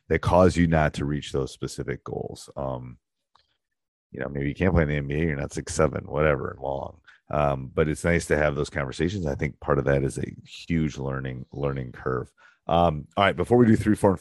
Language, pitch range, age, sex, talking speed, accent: English, 70-85 Hz, 30-49, male, 225 wpm, American